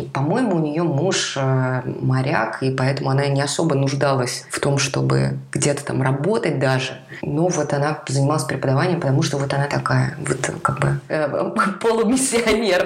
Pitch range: 135-160 Hz